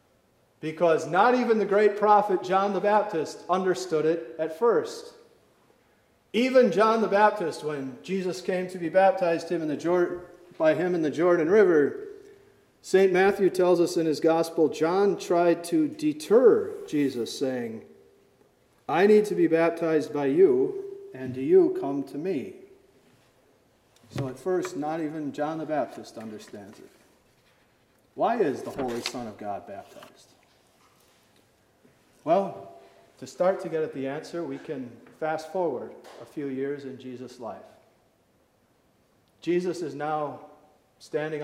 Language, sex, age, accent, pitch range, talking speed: English, male, 40-59, American, 150-210 Hz, 140 wpm